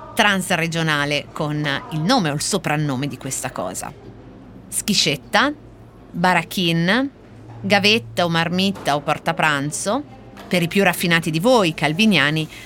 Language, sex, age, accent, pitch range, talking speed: Italian, female, 30-49, native, 150-205 Hz, 115 wpm